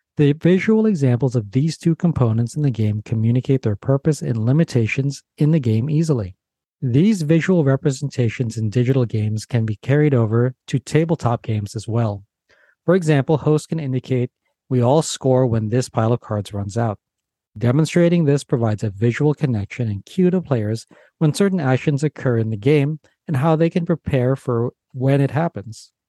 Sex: male